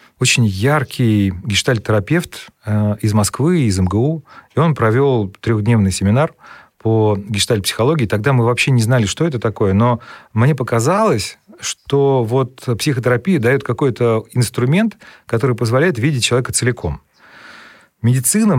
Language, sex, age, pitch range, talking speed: Russian, male, 40-59, 110-135 Hz, 125 wpm